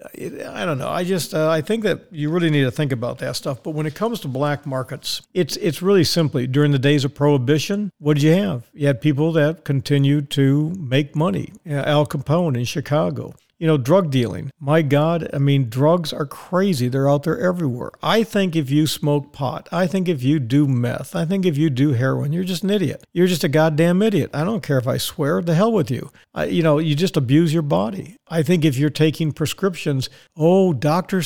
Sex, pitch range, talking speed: male, 145-180 Hz, 225 wpm